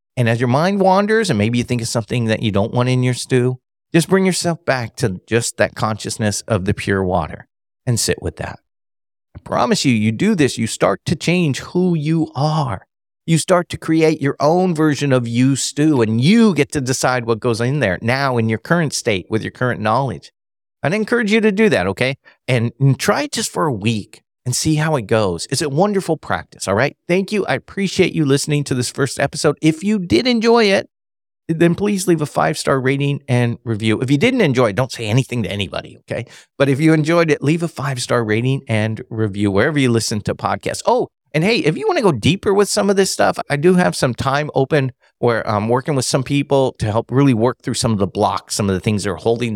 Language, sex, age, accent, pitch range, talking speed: English, male, 40-59, American, 110-160 Hz, 235 wpm